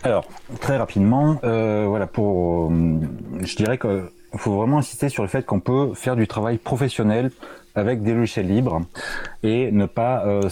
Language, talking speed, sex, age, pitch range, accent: French, 170 wpm, male, 30-49, 95-115 Hz, French